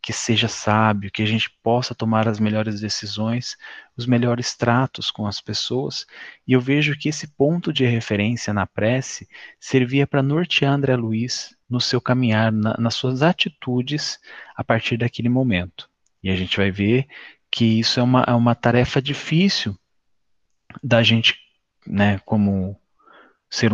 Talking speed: 155 wpm